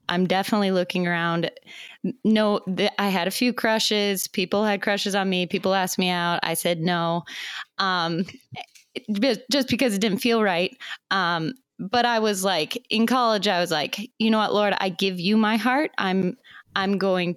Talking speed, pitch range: 175 wpm, 180-230 Hz